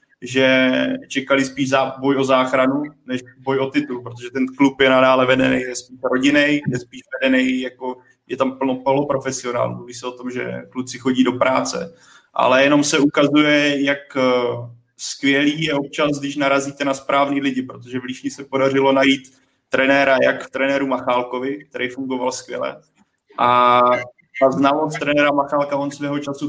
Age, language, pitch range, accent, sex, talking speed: 20-39, Czech, 130-140 Hz, native, male, 155 wpm